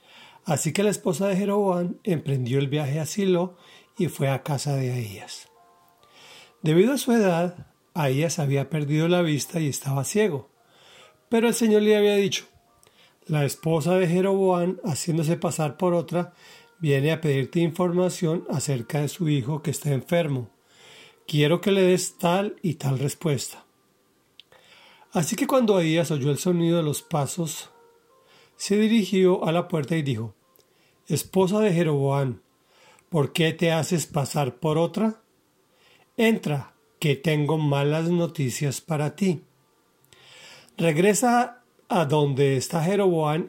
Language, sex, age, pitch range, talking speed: Spanish, male, 40-59, 145-185 Hz, 140 wpm